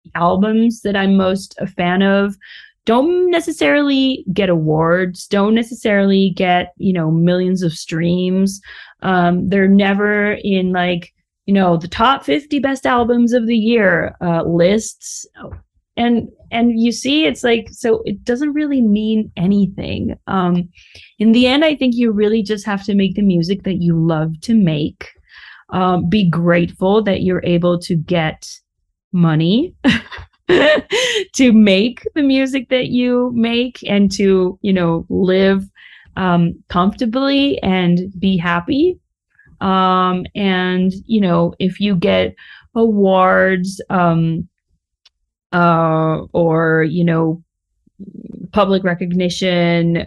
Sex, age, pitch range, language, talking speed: female, 30-49, 175-225 Hz, English, 130 wpm